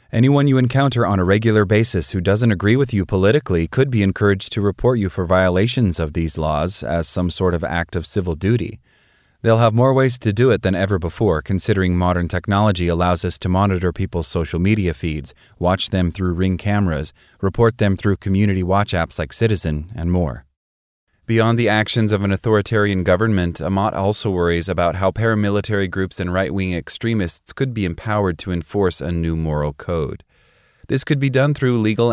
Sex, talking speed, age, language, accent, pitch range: male, 185 wpm, 30-49, English, American, 90-110 Hz